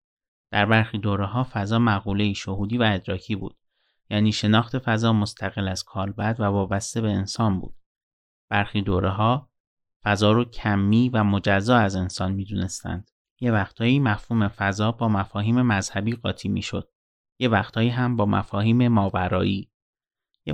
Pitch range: 100-120 Hz